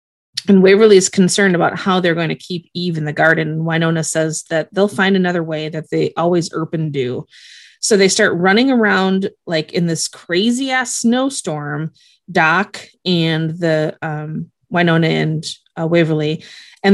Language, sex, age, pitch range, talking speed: English, female, 30-49, 155-200 Hz, 165 wpm